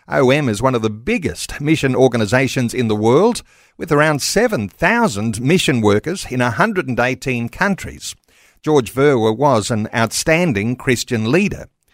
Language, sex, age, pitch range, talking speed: English, male, 50-69, 120-160 Hz, 130 wpm